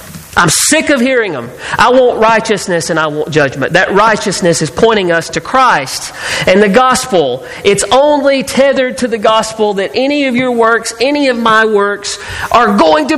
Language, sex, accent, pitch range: English, male, American, 195-285 Hz